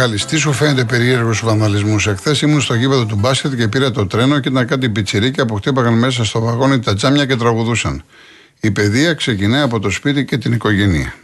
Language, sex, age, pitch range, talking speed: Greek, male, 50-69, 95-125 Hz, 200 wpm